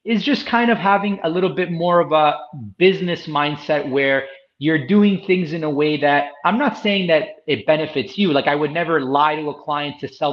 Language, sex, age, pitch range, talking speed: English, male, 30-49, 145-185 Hz, 220 wpm